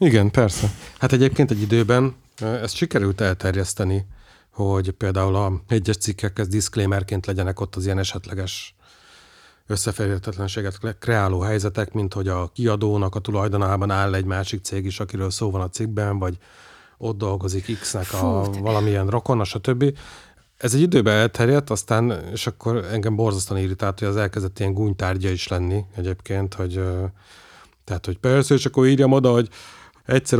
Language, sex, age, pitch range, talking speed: Hungarian, male, 30-49, 95-115 Hz, 150 wpm